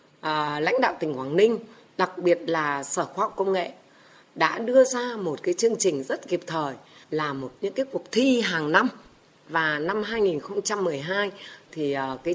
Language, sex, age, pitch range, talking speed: Vietnamese, female, 20-39, 150-220 Hz, 175 wpm